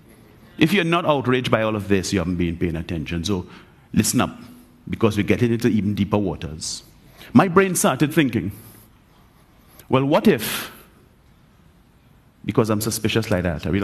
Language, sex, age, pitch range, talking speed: English, male, 50-69, 100-160 Hz, 160 wpm